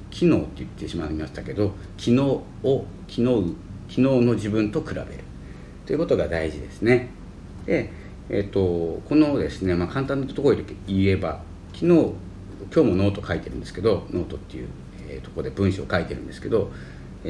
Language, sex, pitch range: Japanese, male, 85-115 Hz